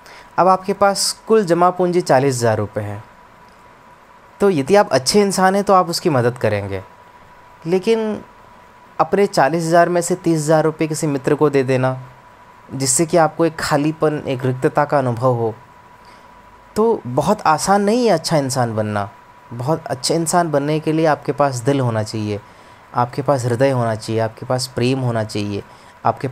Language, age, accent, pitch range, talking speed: Hindi, 20-39, native, 120-160 Hz, 165 wpm